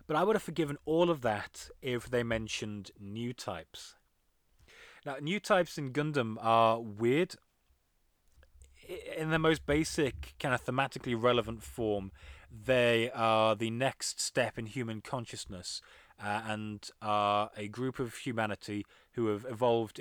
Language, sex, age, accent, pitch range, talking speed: English, male, 30-49, British, 105-130 Hz, 140 wpm